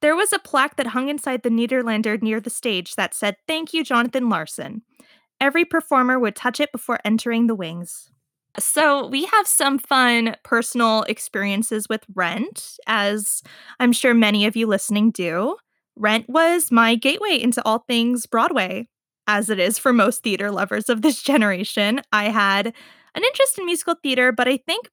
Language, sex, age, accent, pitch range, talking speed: English, female, 20-39, American, 215-275 Hz, 175 wpm